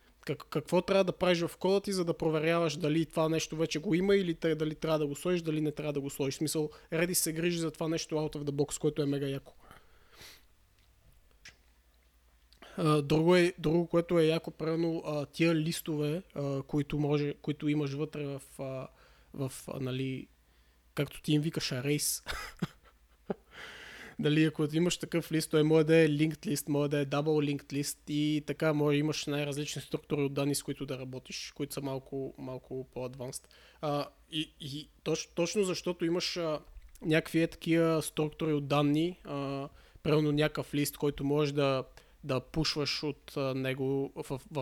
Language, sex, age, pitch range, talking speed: Bulgarian, male, 20-39, 140-160 Hz, 165 wpm